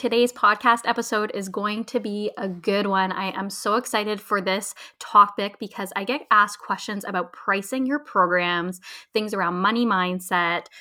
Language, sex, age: English, female, 20-39